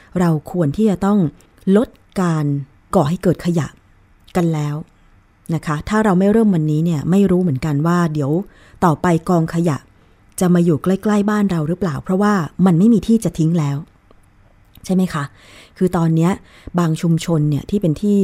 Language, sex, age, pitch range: Thai, female, 20-39, 145-190 Hz